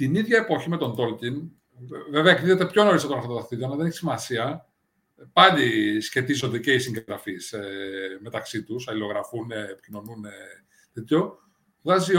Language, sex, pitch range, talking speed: Greek, male, 120-195 Hz, 140 wpm